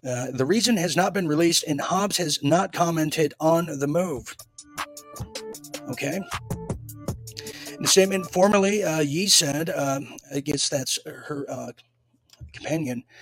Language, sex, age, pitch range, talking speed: English, male, 40-59, 125-170 Hz, 135 wpm